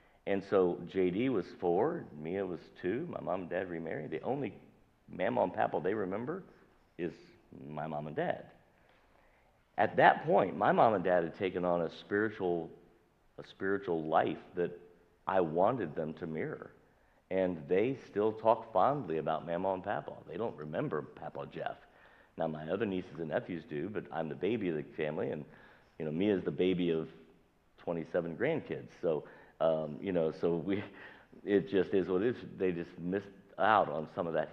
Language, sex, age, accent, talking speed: English, male, 50-69, American, 175 wpm